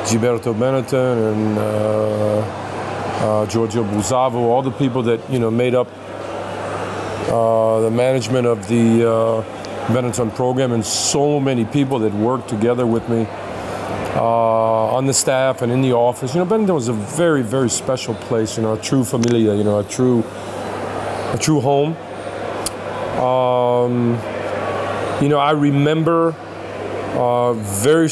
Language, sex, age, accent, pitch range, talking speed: Italian, male, 40-59, American, 115-135 Hz, 145 wpm